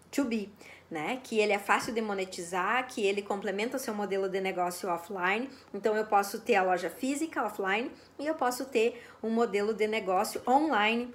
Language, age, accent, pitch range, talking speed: Portuguese, 20-39, Brazilian, 200-250 Hz, 190 wpm